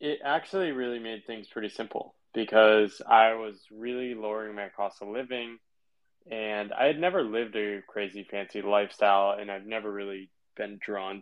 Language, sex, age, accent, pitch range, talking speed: Hebrew, male, 20-39, American, 105-125 Hz, 165 wpm